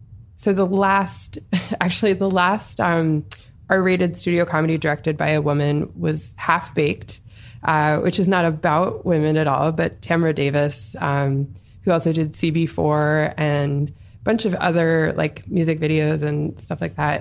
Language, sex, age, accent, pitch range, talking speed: English, female, 20-39, American, 145-180 Hz, 155 wpm